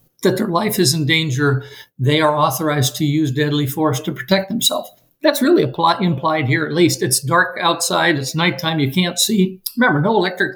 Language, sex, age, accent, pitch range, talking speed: English, male, 60-79, American, 140-180 Hz, 195 wpm